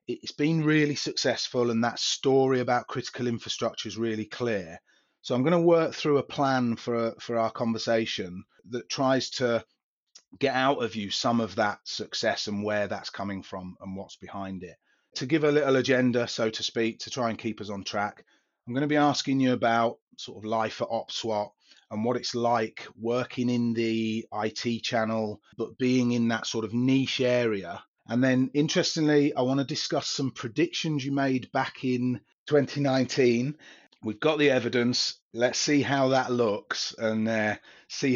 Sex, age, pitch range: male, 30-49, 110-130 Hz